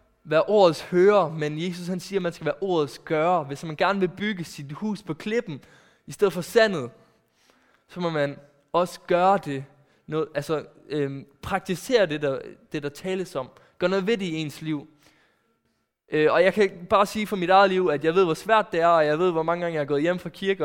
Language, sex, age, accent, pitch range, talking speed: Danish, male, 20-39, native, 145-180 Hz, 225 wpm